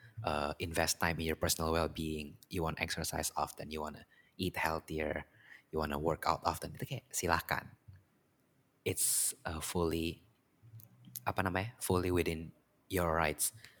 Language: Indonesian